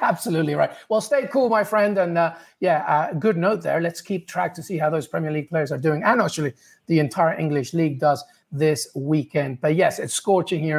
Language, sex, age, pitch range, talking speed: English, male, 30-49, 165-210 Hz, 220 wpm